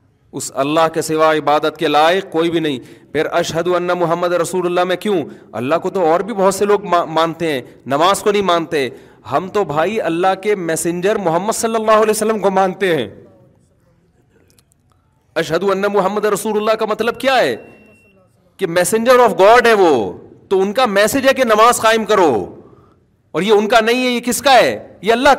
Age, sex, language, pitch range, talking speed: 40-59, male, Urdu, 160-215 Hz, 190 wpm